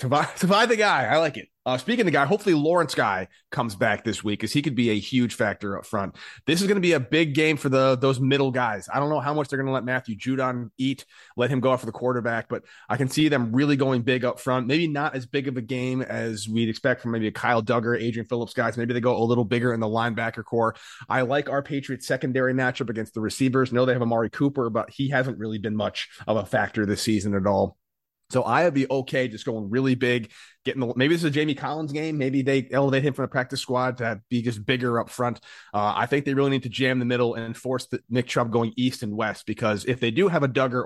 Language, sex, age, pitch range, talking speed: English, male, 30-49, 115-135 Hz, 270 wpm